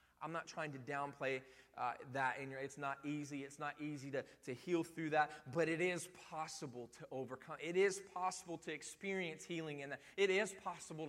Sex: male